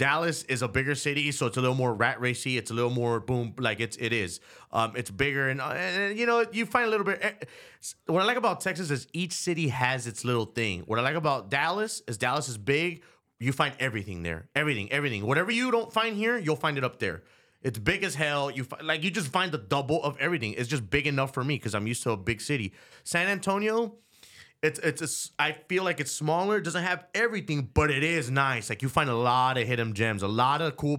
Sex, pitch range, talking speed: male, 120-165 Hz, 245 wpm